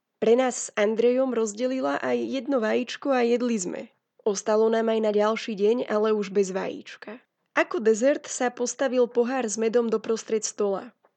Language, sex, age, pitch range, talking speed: Slovak, female, 20-39, 210-245 Hz, 160 wpm